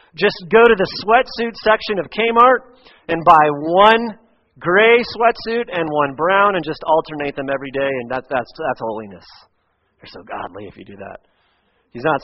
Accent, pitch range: American, 140-180 Hz